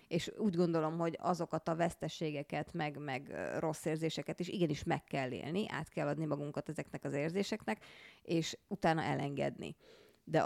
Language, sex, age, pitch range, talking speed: Hungarian, female, 30-49, 155-185 Hz, 155 wpm